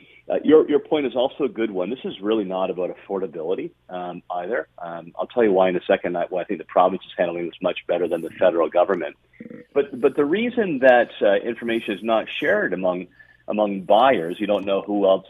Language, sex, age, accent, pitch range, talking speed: English, male, 40-59, American, 95-115 Hz, 230 wpm